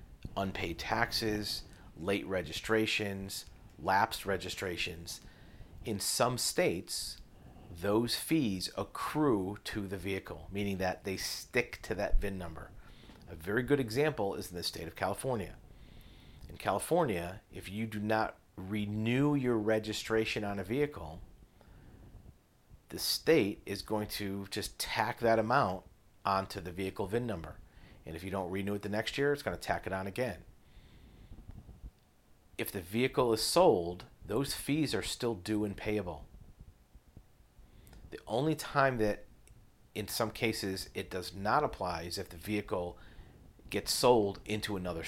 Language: English